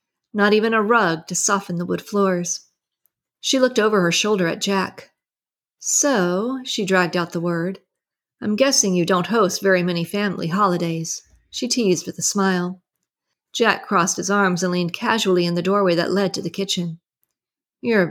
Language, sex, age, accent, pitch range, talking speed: English, female, 40-59, American, 175-215 Hz, 170 wpm